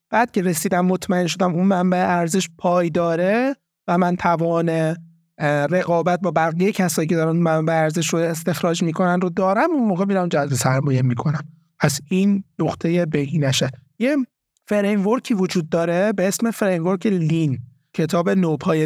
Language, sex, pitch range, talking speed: Persian, male, 165-205 Hz, 145 wpm